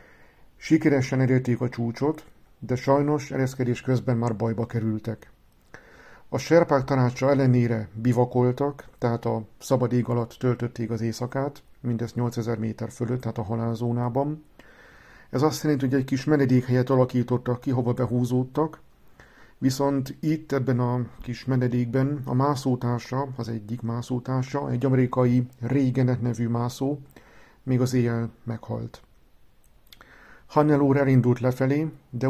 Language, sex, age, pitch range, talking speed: Hungarian, male, 50-69, 120-135 Hz, 125 wpm